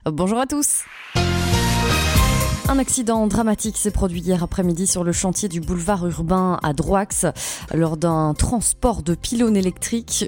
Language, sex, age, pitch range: French, female, 20-39, 155-210 Hz